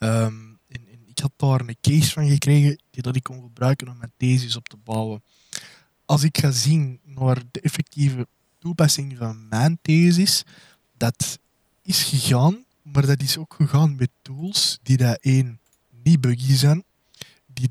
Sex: male